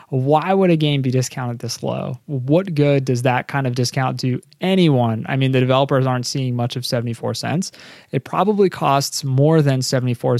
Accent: American